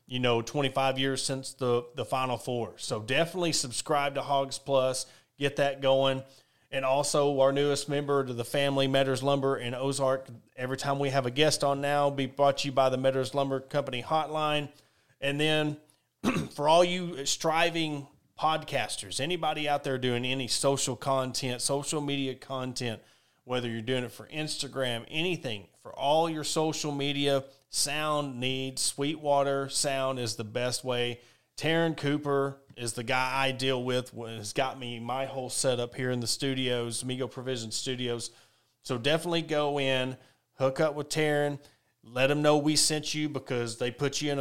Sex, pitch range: male, 130-150 Hz